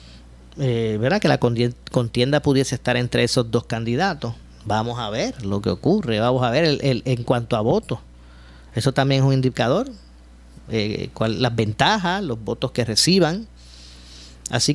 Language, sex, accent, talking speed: Spanish, male, American, 165 wpm